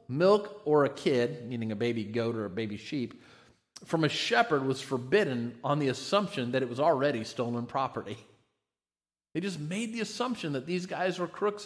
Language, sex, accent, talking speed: English, male, American, 185 wpm